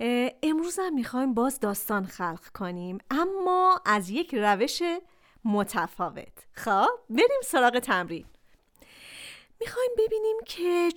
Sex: female